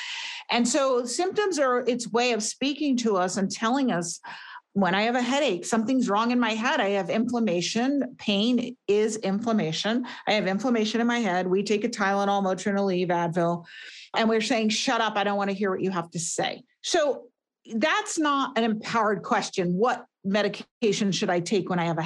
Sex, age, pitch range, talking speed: female, 50-69, 195-250 Hz, 195 wpm